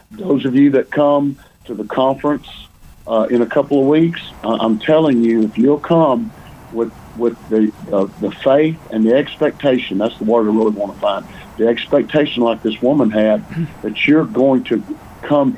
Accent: American